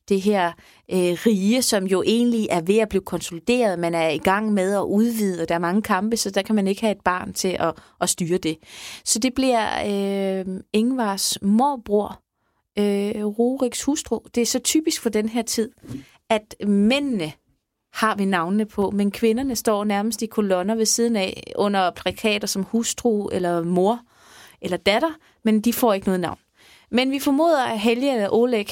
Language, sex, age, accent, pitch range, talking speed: Danish, female, 30-49, native, 190-230 Hz, 180 wpm